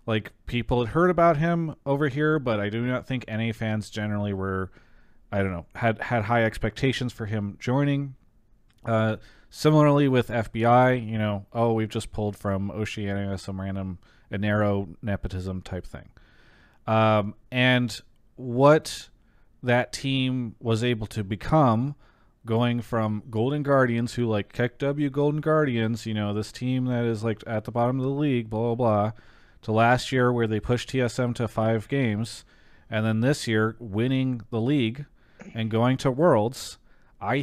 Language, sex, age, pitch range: English, male, 30-49, 110-125 Hz